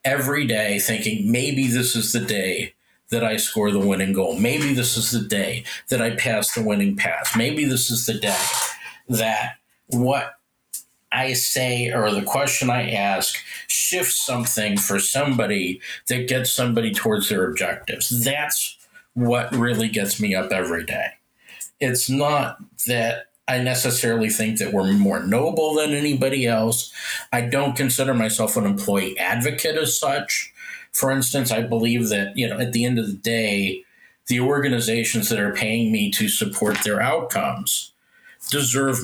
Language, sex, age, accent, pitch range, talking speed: English, male, 50-69, American, 110-135 Hz, 160 wpm